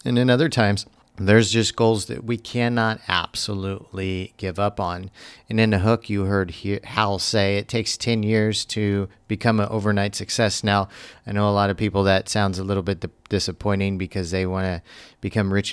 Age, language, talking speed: 40-59, English, 190 wpm